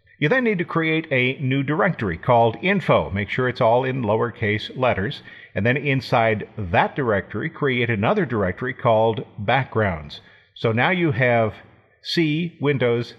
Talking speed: 150 wpm